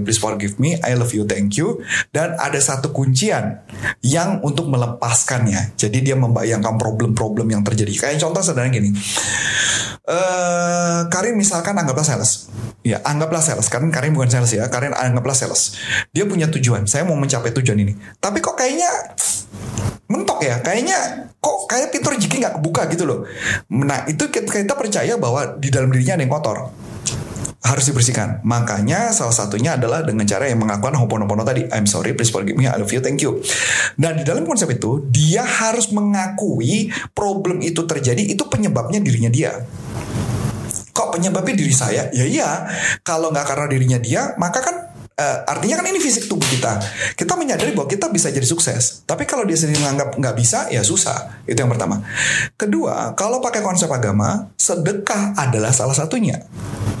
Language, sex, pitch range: Indonesian, male, 115-165 Hz